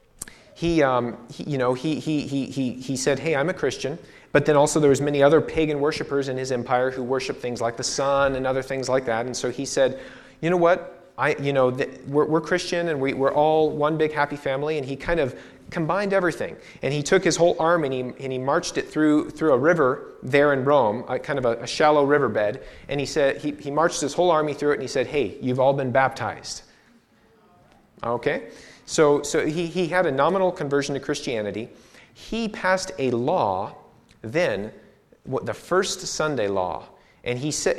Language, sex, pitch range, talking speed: English, male, 130-155 Hz, 215 wpm